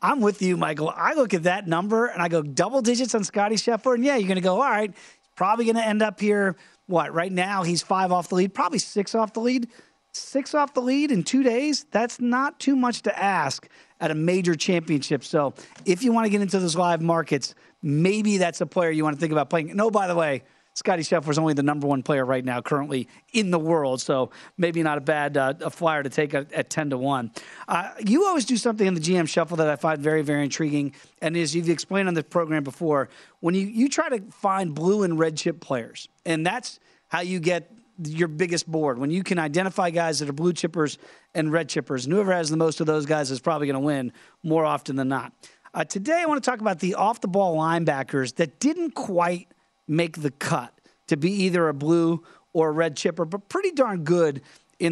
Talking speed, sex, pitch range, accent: 235 wpm, male, 155-205 Hz, American